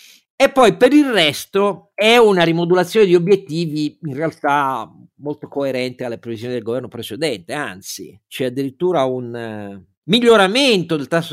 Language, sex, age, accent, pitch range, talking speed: Italian, male, 50-69, native, 115-145 Hz, 140 wpm